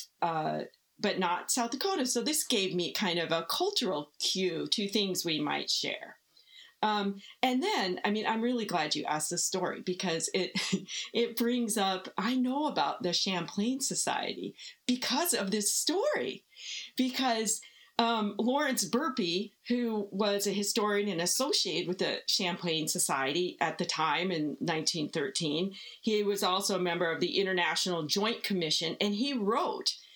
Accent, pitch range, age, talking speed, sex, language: American, 180-245 Hz, 40-59, 155 wpm, female, English